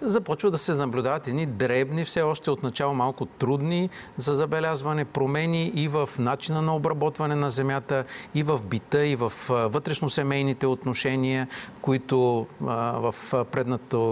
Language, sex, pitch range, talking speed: Bulgarian, male, 120-150 Hz, 135 wpm